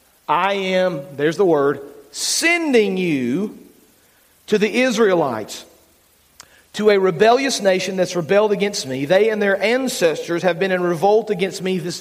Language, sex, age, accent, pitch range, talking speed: English, male, 40-59, American, 180-235 Hz, 145 wpm